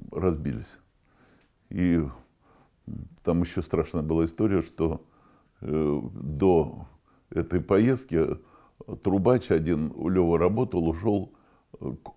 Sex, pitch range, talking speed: male, 80-100 Hz, 90 wpm